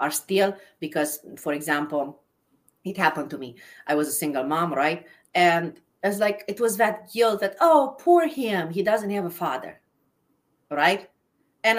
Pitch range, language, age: 160-225 Hz, English, 30-49